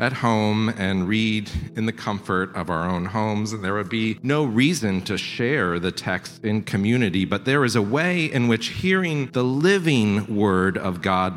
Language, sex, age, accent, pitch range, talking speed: English, male, 40-59, American, 95-130 Hz, 190 wpm